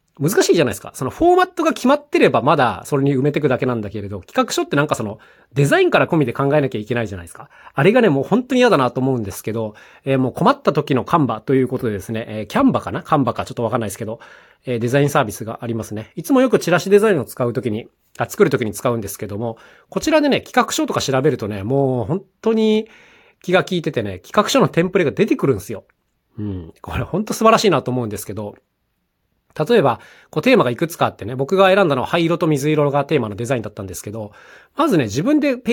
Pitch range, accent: 110-185 Hz, native